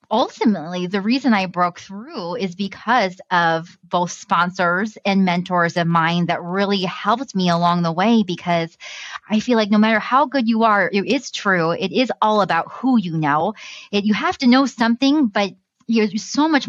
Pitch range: 175-220 Hz